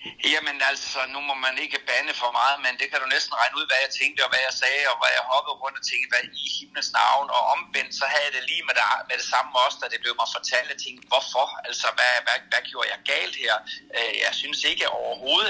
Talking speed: 265 wpm